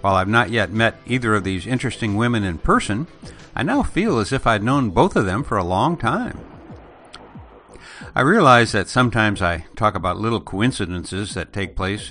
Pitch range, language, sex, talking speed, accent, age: 100-125 Hz, English, male, 190 wpm, American, 60-79